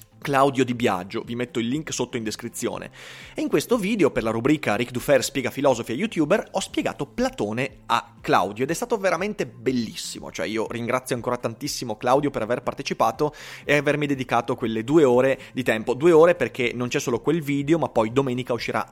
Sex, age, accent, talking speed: male, 30-49, native, 195 wpm